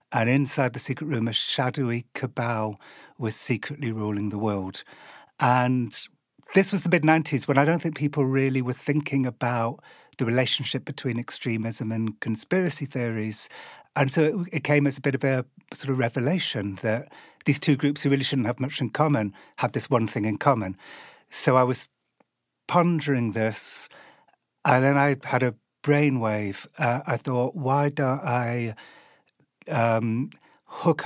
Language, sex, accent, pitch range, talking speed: English, male, British, 115-140 Hz, 160 wpm